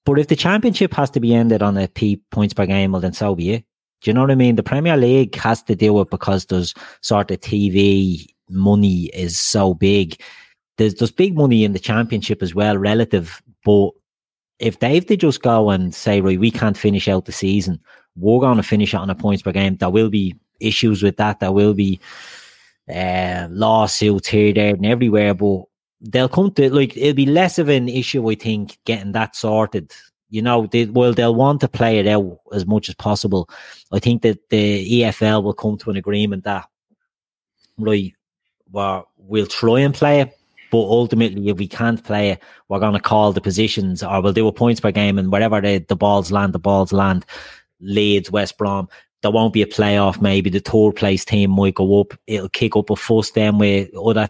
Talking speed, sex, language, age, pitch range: 215 wpm, male, English, 30-49, 100-115 Hz